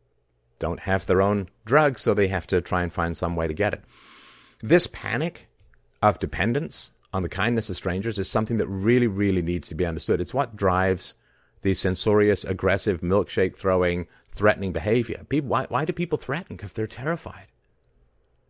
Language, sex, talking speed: English, male, 170 wpm